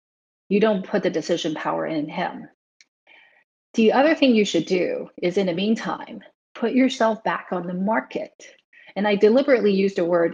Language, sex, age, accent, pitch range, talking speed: English, female, 30-49, American, 180-240 Hz, 175 wpm